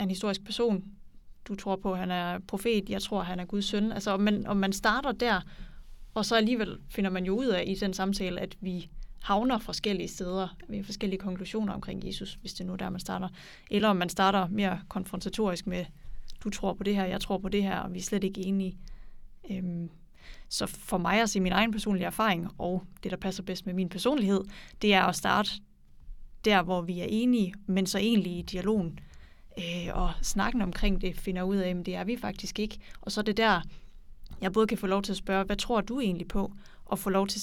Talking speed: 230 wpm